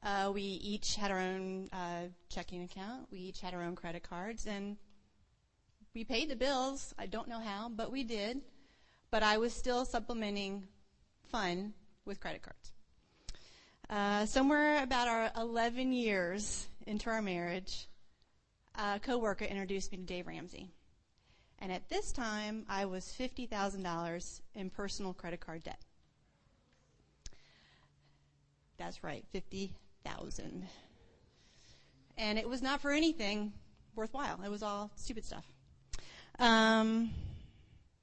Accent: American